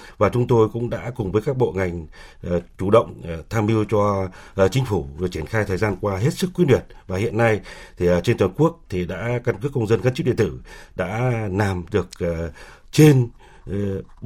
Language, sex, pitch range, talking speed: Vietnamese, male, 95-120 Hz, 225 wpm